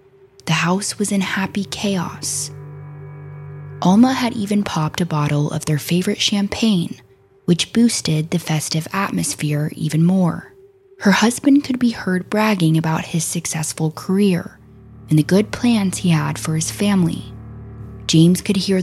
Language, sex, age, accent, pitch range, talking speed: English, female, 20-39, American, 155-205 Hz, 145 wpm